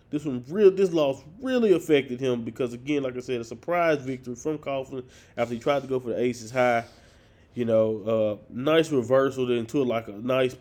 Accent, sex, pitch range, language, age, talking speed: American, male, 115-140 Hz, English, 20-39, 205 wpm